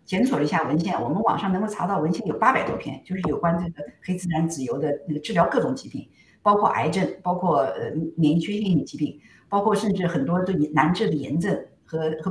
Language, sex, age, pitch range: Chinese, female, 50-69, 155-215 Hz